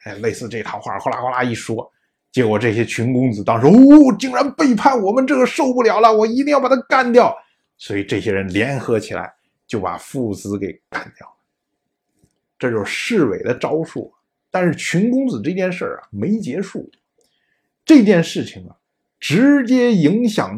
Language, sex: Chinese, male